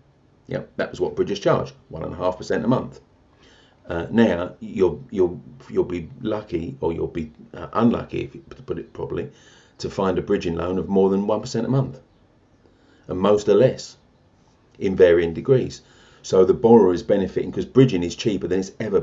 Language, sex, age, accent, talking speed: English, male, 40-59, British, 195 wpm